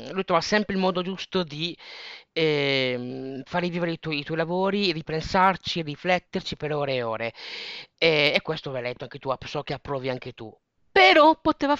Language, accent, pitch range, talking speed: Italian, native, 140-195 Hz, 185 wpm